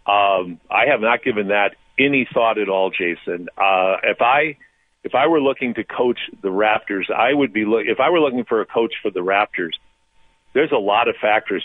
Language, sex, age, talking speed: English, male, 50-69, 210 wpm